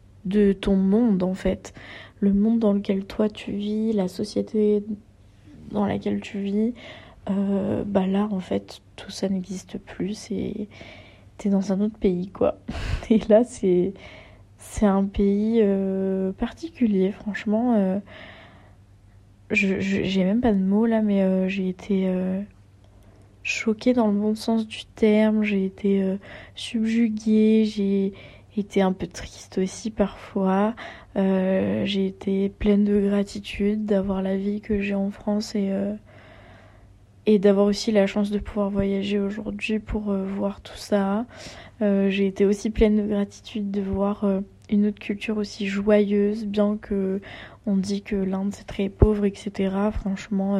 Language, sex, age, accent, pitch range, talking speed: French, female, 20-39, French, 190-210 Hz, 155 wpm